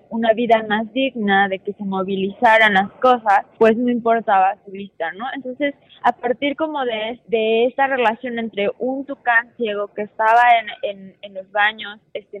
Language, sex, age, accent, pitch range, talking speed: Spanish, female, 20-39, Mexican, 210-245 Hz, 175 wpm